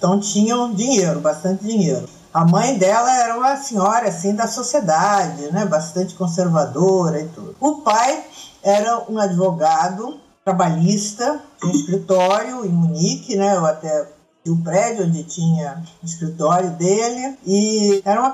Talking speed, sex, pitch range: 145 wpm, female, 170-225 Hz